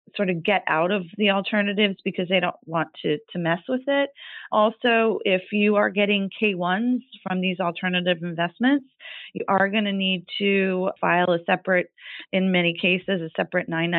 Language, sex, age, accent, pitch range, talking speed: English, female, 30-49, American, 170-210 Hz, 170 wpm